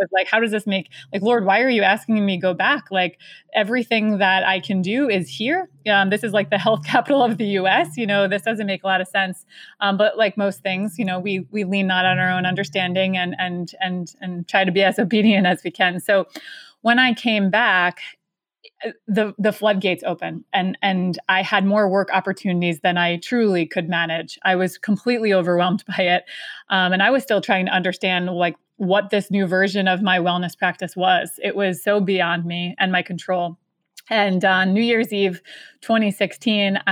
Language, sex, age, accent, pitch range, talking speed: English, female, 20-39, American, 185-210 Hz, 210 wpm